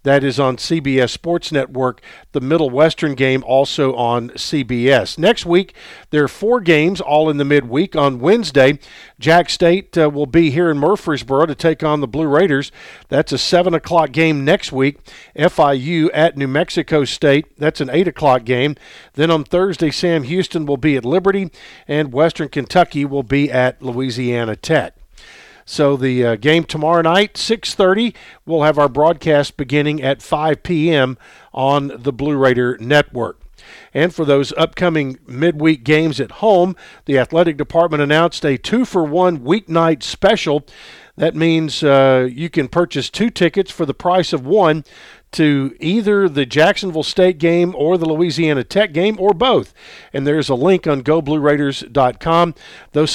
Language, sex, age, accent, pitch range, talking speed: English, male, 50-69, American, 140-170 Hz, 160 wpm